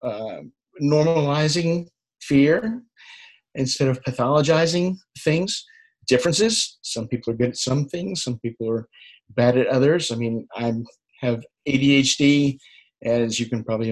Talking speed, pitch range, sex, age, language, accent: 130 wpm, 120-150 Hz, male, 50-69, English, American